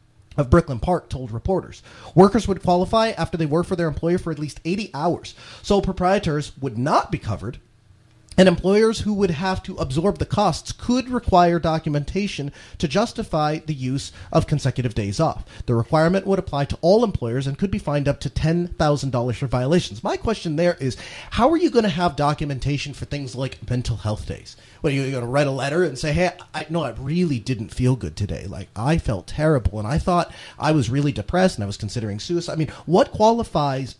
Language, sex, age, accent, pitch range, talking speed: English, male, 30-49, American, 125-175 Hz, 205 wpm